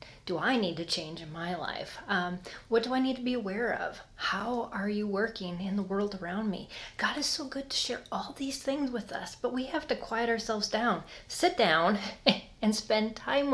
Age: 30-49